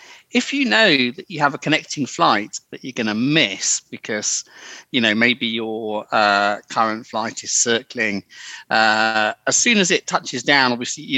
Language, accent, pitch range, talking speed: English, British, 115-150 Hz, 170 wpm